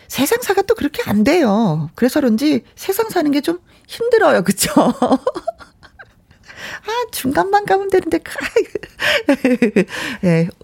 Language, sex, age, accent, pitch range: Korean, female, 40-59, native, 175-260 Hz